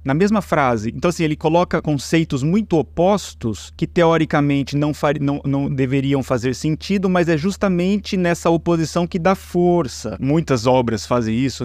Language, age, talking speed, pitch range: Portuguese, 20-39, 160 wpm, 140-185 Hz